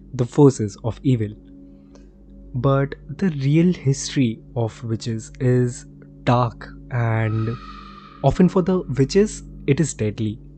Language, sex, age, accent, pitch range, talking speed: Hindi, male, 20-39, native, 125-160 Hz, 115 wpm